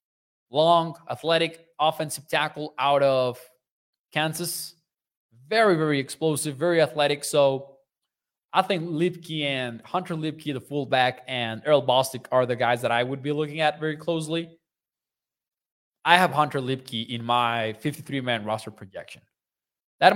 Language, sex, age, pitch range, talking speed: English, male, 20-39, 130-165 Hz, 135 wpm